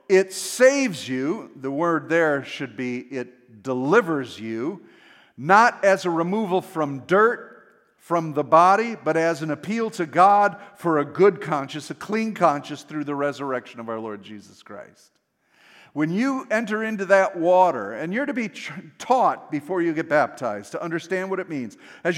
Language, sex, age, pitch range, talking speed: English, male, 50-69, 150-215 Hz, 170 wpm